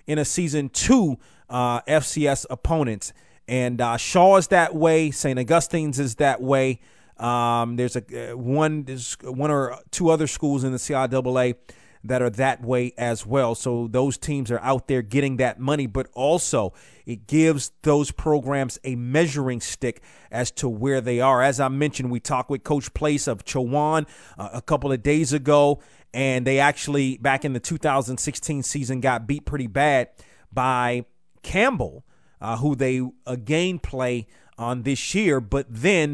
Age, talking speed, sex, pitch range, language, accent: 30-49, 170 wpm, male, 120-145 Hz, English, American